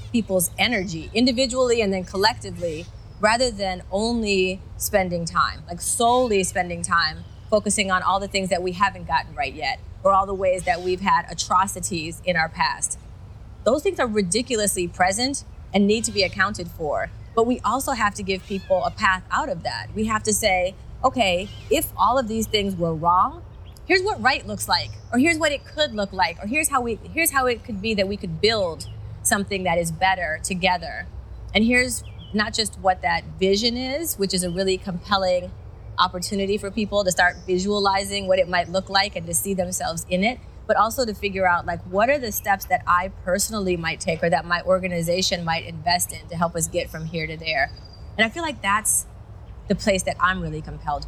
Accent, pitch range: American, 180-215 Hz